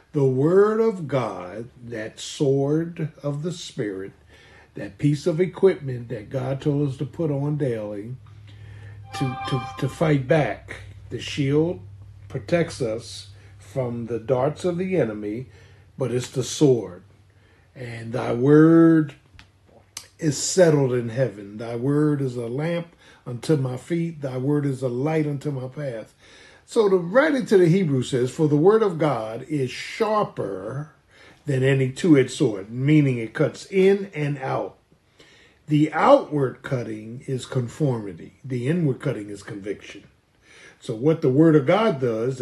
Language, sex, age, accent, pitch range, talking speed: English, male, 50-69, American, 115-155 Hz, 145 wpm